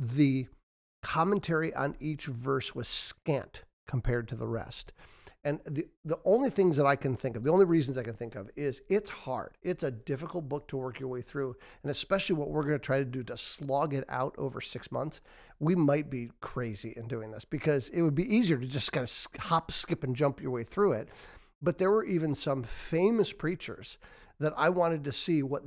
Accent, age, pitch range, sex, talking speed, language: American, 50-69, 135-180 Hz, male, 215 wpm, English